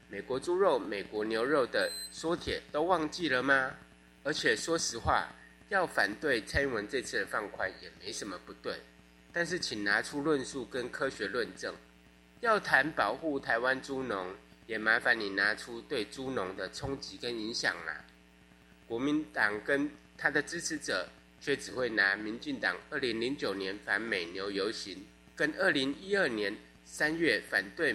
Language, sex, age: Chinese, male, 20-39